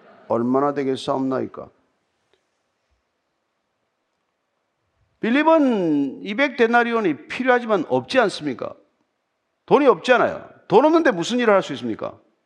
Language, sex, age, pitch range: Korean, male, 50-69, 185-260 Hz